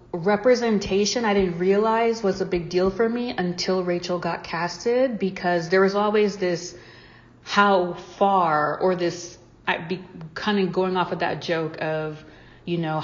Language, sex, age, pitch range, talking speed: English, female, 30-49, 160-185 Hz, 160 wpm